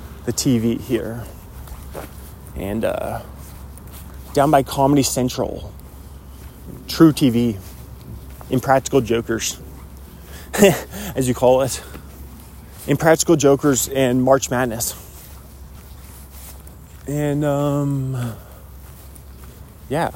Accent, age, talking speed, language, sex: American, 20-39, 75 wpm, English, male